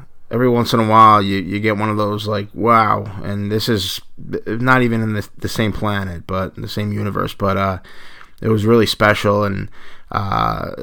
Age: 20-39